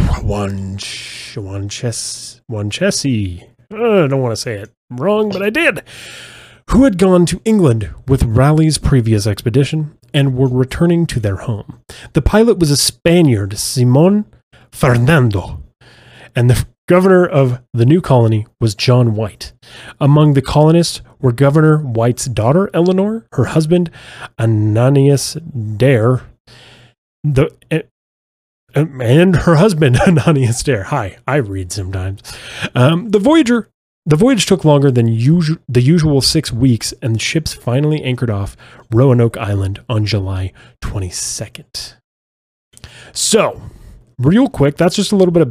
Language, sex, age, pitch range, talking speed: English, male, 30-49, 115-155 Hz, 135 wpm